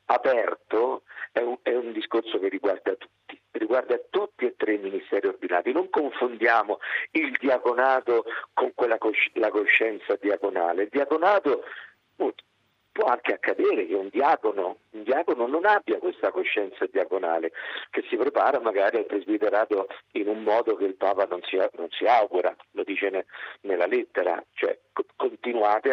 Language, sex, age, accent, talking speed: Italian, male, 50-69, native, 150 wpm